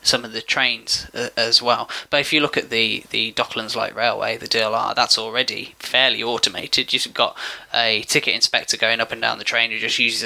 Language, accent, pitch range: English, British, 115-140 Hz